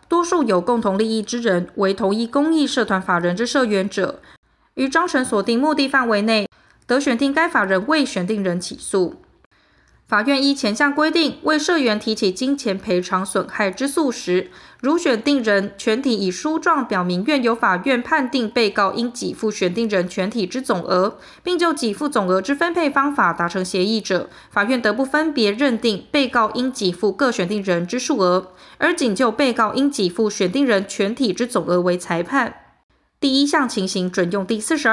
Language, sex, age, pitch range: Chinese, female, 20-39, 195-275 Hz